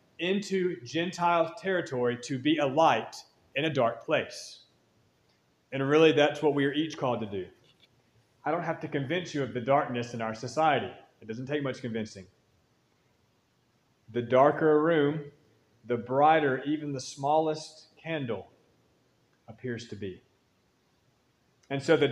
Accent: American